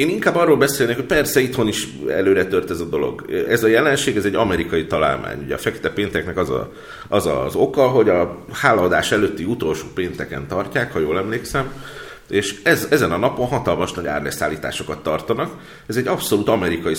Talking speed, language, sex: 185 wpm, Hungarian, male